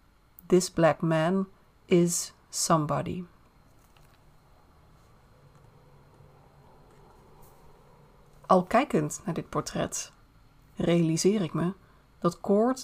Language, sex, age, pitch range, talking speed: Dutch, female, 30-49, 160-190 Hz, 70 wpm